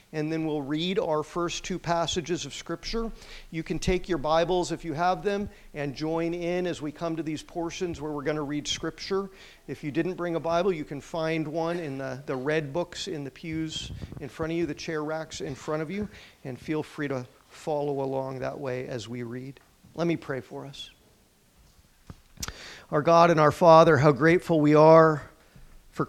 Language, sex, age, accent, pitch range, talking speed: English, male, 50-69, American, 145-165 Hz, 205 wpm